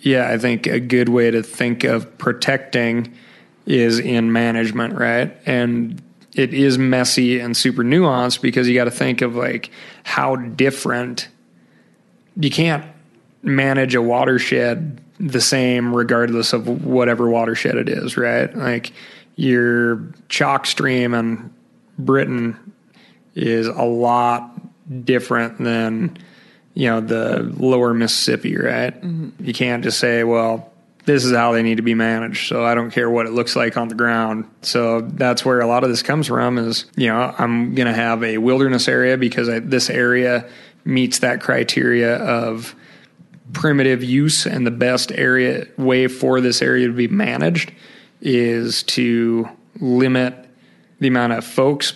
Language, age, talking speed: English, 30-49, 150 wpm